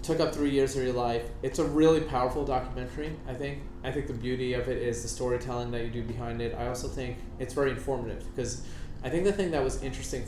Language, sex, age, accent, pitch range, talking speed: English, male, 20-39, American, 115-130 Hz, 245 wpm